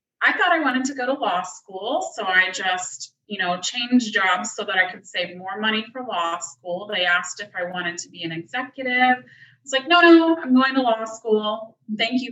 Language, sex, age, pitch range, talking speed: English, female, 20-39, 180-240 Hz, 230 wpm